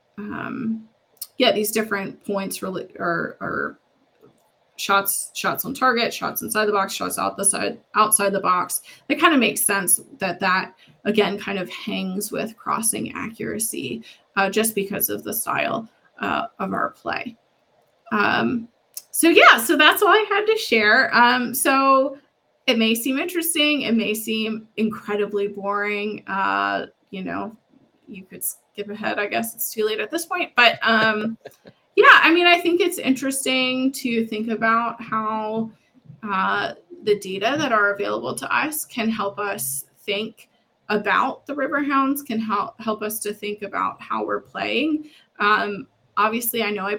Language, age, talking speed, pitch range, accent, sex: English, 20-39, 160 wpm, 205-265 Hz, American, female